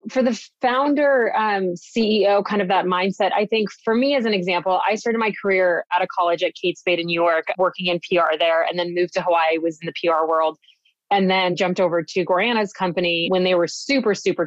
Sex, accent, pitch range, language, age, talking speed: female, American, 175-215 Hz, English, 20-39, 230 wpm